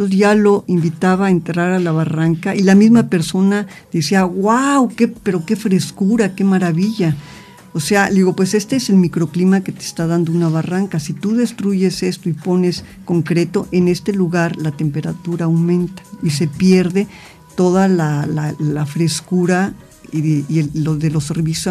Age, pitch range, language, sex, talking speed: 50-69, 165-195 Hz, Spanish, female, 175 wpm